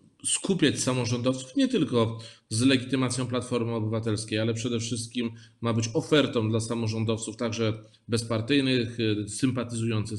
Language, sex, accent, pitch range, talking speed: Polish, male, native, 110-130 Hz, 110 wpm